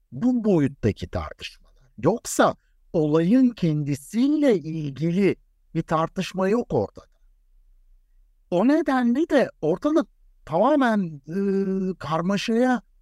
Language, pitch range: Turkish, 135-215 Hz